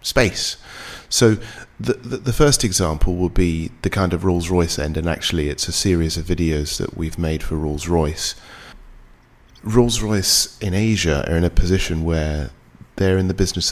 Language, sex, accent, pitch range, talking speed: English, male, British, 85-110 Hz, 165 wpm